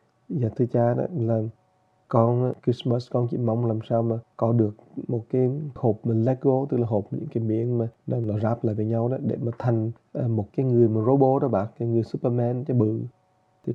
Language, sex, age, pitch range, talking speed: English, male, 20-39, 115-130 Hz, 215 wpm